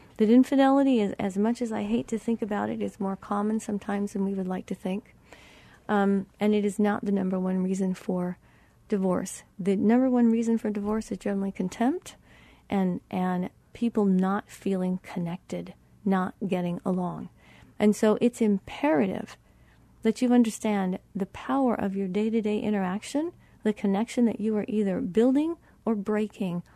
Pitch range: 190-225 Hz